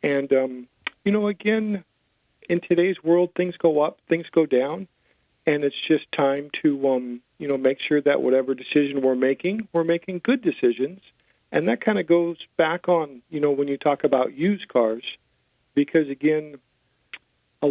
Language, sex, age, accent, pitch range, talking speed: English, male, 50-69, American, 125-165 Hz, 175 wpm